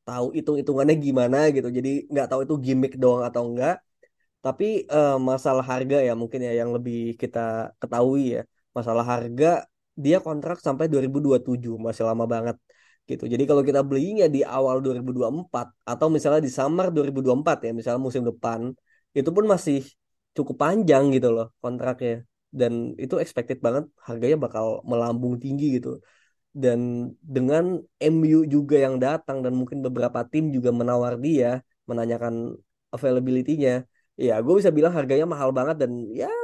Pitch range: 120-150 Hz